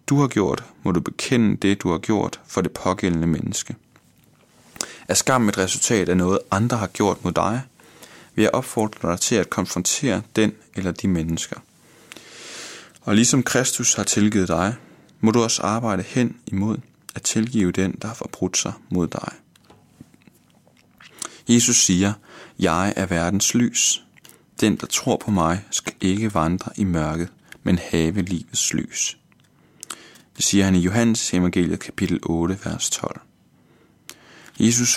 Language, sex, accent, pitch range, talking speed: Danish, male, native, 90-110 Hz, 150 wpm